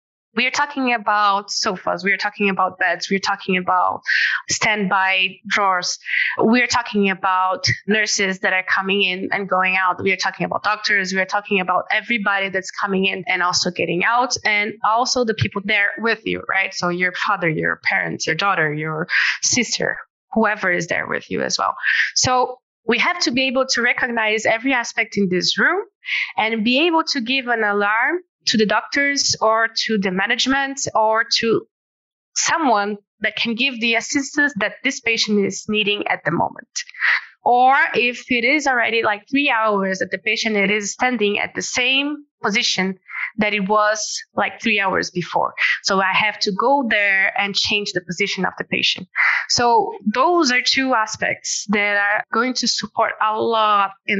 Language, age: English, 20-39